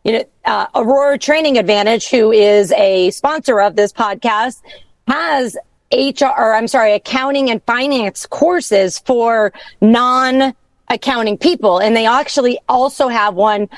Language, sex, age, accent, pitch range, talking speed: English, female, 40-59, American, 205-250 Hz, 135 wpm